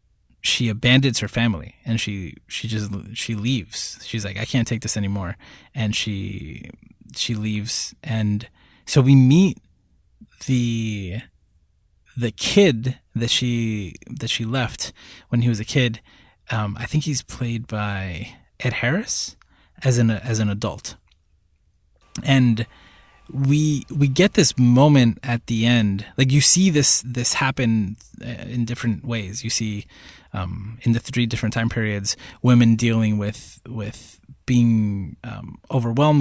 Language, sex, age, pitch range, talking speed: English, male, 20-39, 105-125 Hz, 140 wpm